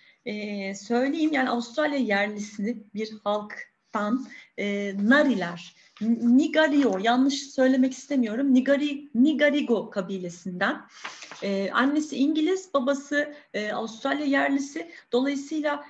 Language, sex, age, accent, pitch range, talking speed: Turkish, female, 30-49, native, 220-285 Hz, 85 wpm